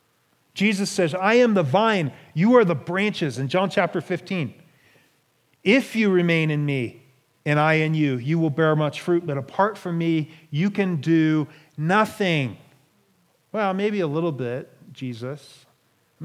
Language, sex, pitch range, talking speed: English, male, 140-185 Hz, 160 wpm